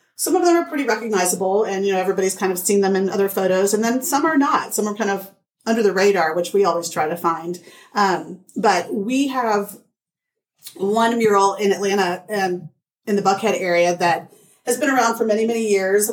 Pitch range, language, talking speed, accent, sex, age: 185-220 Hz, English, 210 wpm, American, female, 40-59